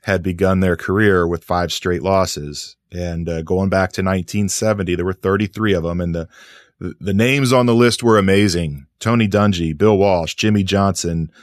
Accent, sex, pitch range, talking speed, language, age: American, male, 90-105 Hz, 180 wpm, English, 30-49